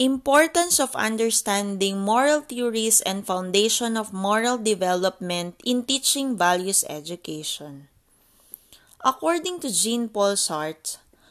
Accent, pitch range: Filipino, 185-245 Hz